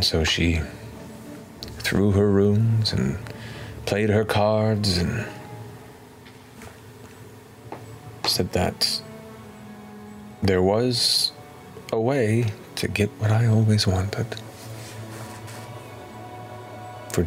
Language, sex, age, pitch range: English, male, 40-59, 100-115 Hz